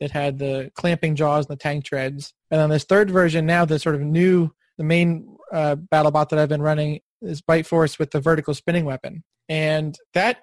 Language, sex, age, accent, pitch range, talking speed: English, male, 20-39, American, 150-170 Hz, 220 wpm